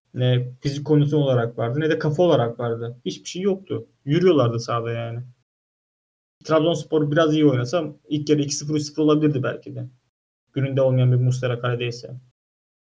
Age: 30-49